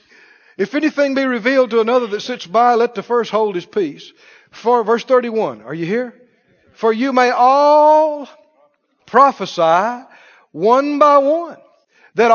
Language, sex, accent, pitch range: English, male, American, 185-280 Hz